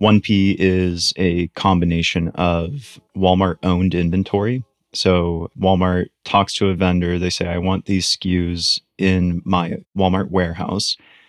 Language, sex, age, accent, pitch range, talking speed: English, male, 20-39, American, 90-100 Hz, 120 wpm